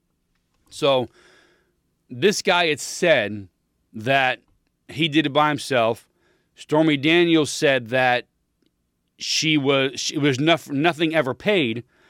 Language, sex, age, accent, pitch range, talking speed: English, male, 40-59, American, 135-170 Hz, 110 wpm